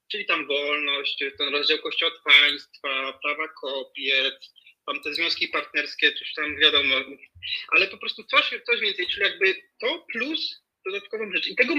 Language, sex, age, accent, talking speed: Polish, male, 30-49, native, 160 wpm